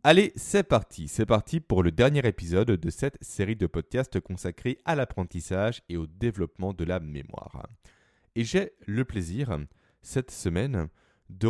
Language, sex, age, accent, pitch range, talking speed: French, male, 20-39, French, 85-120 Hz, 155 wpm